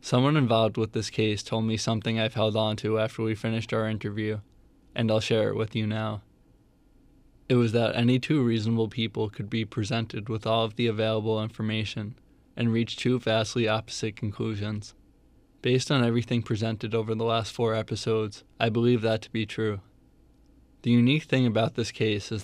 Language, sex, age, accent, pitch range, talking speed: English, male, 20-39, American, 110-120 Hz, 180 wpm